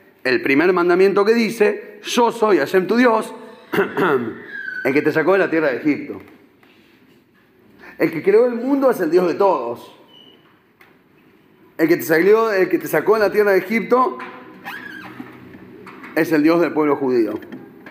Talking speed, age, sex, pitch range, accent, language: 160 wpm, 40-59, male, 180-245 Hz, Argentinian, Spanish